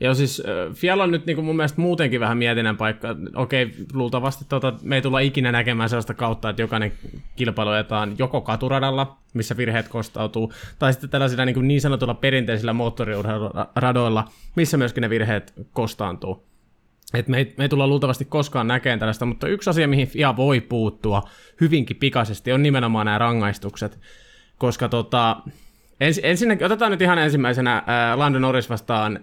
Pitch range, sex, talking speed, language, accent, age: 115-140 Hz, male, 160 wpm, Finnish, native, 20-39